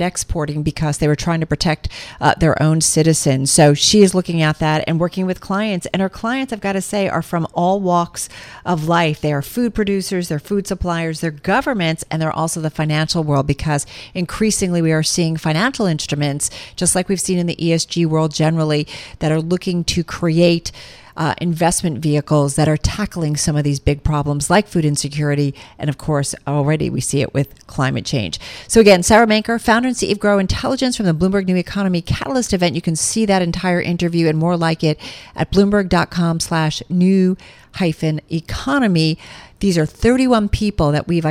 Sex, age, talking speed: female, 40-59, 190 wpm